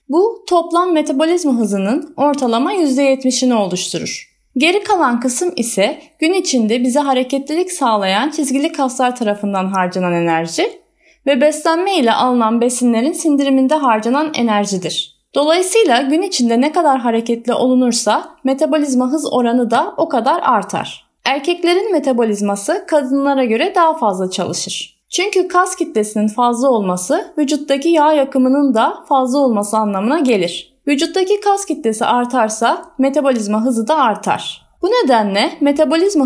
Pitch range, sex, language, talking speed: 225-315 Hz, female, Turkish, 120 wpm